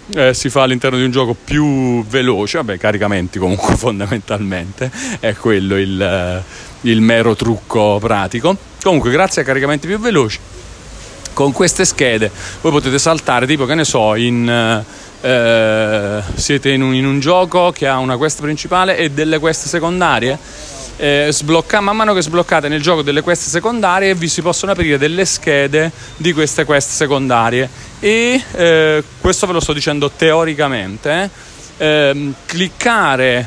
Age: 30-49